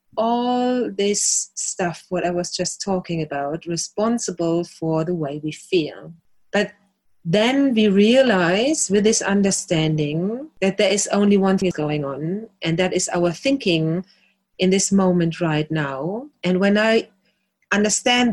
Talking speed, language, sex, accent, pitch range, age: 145 wpm, English, female, German, 170-210 Hz, 30-49